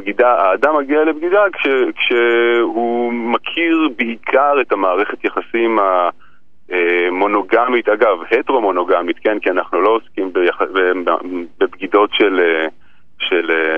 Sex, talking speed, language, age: male, 95 wpm, Hebrew, 30-49